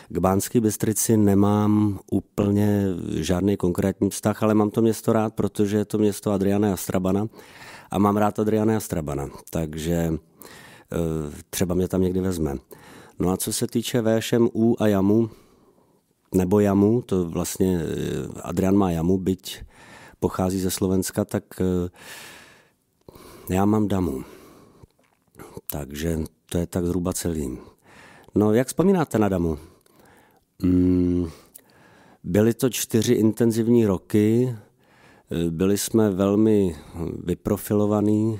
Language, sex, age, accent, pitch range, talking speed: Czech, male, 50-69, native, 90-105 Hz, 115 wpm